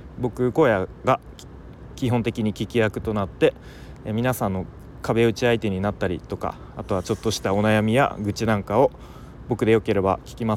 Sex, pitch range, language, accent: male, 95-120 Hz, Japanese, native